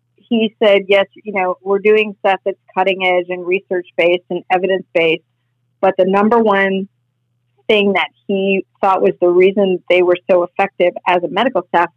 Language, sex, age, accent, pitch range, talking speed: English, female, 40-59, American, 180-210 Hz, 180 wpm